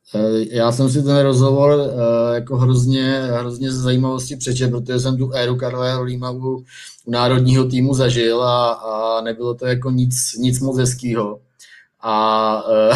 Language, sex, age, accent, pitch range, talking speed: Czech, male, 20-39, native, 115-130 Hz, 135 wpm